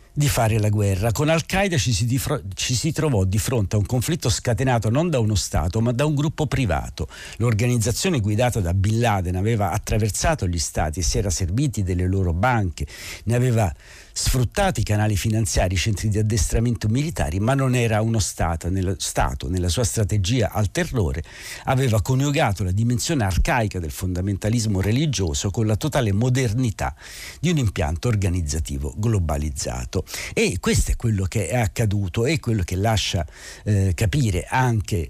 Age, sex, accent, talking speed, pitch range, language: 60-79, male, native, 160 wpm, 95-120 Hz, Italian